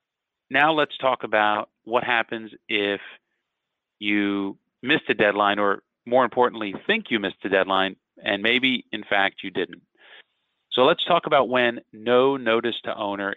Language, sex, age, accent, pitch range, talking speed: English, male, 40-59, American, 100-115 Hz, 155 wpm